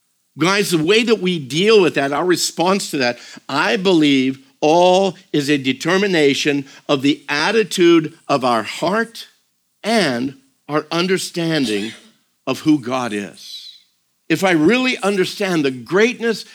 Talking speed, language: 135 wpm, English